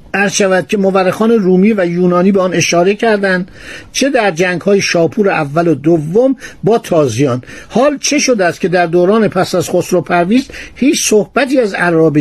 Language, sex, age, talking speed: Persian, male, 60-79, 165 wpm